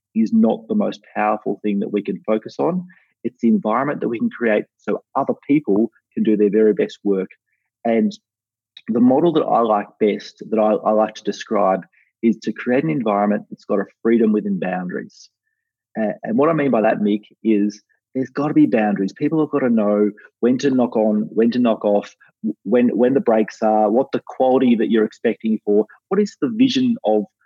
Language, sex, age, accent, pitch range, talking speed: English, male, 30-49, Australian, 105-150 Hz, 210 wpm